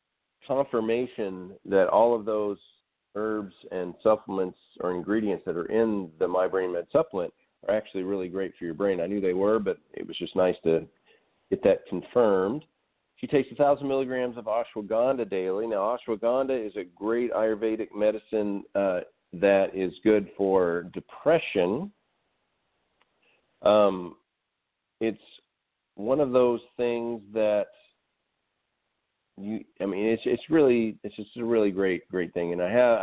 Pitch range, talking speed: 90-110 Hz, 150 wpm